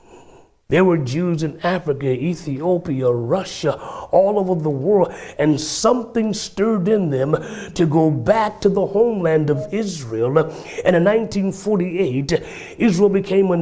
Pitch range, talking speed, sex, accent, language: 120-200 Hz, 130 wpm, male, American, English